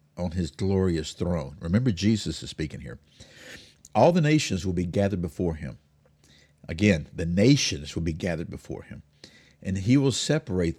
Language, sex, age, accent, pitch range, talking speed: English, male, 50-69, American, 75-105 Hz, 160 wpm